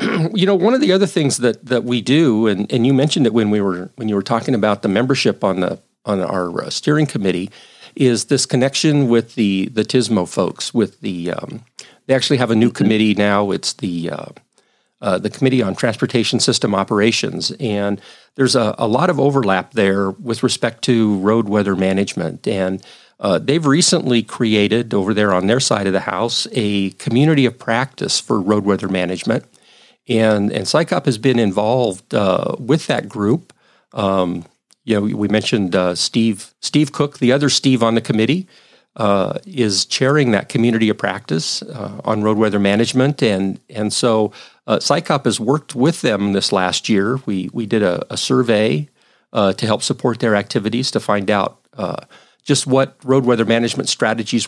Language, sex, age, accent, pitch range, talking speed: English, male, 40-59, American, 100-130 Hz, 185 wpm